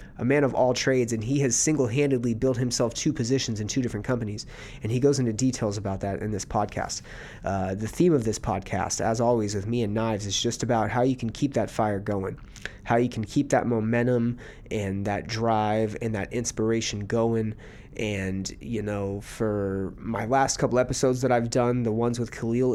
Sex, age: male, 30-49